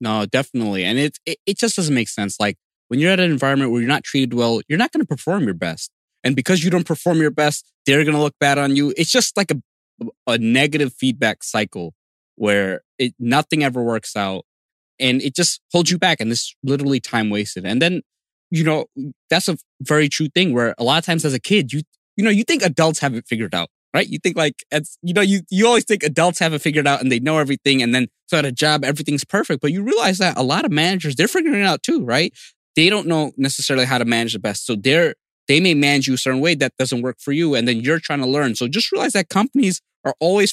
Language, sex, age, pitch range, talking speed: English, male, 20-39, 125-170 Hz, 250 wpm